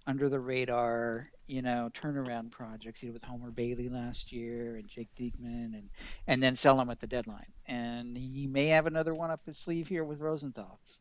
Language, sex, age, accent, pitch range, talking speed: English, male, 50-69, American, 115-130 Hz, 200 wpm